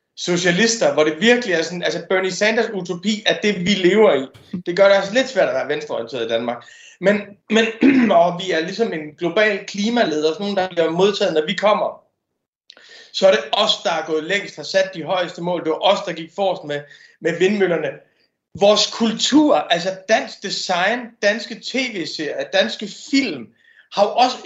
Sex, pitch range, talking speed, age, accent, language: male, 180-230 Hz, 190 wpm, 30-49, native, Danish